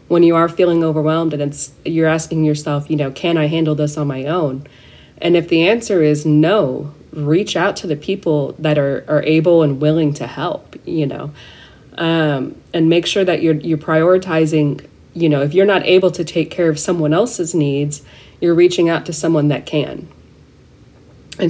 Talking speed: 195 wpm